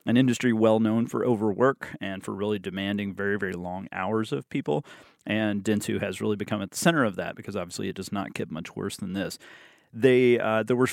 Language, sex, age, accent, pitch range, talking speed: English, male, 30-49, American, 105-125 Hz, 215 wpm